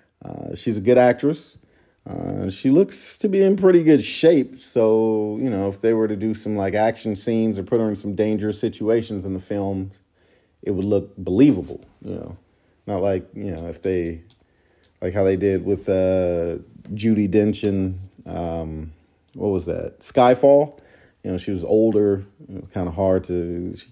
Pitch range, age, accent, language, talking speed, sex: 95-135 Hz, 40-59, American, English, 185 wpm, male